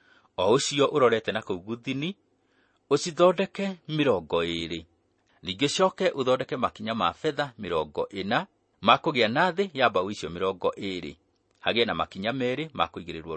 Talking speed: 115 wpm